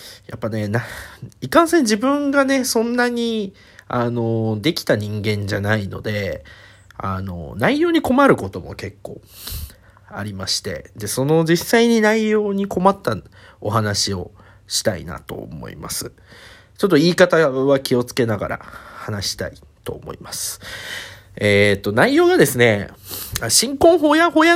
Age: 40-59